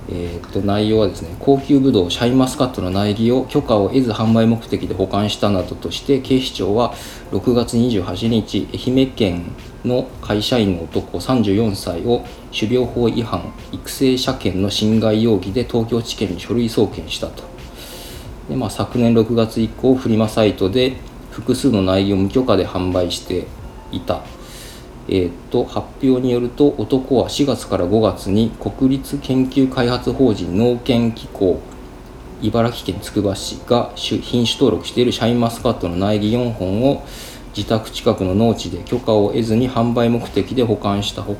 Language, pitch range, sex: Japanese, 95-125 Hz, male